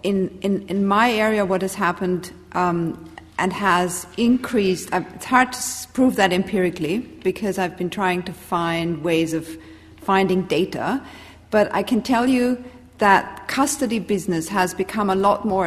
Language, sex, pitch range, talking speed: English, female, 175-210 Hz, 155 wpm